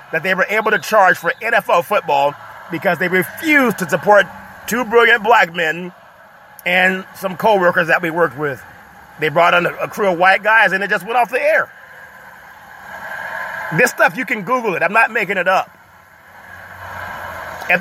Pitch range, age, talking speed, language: 155-200 Hz, 30-49, 175 wpm, English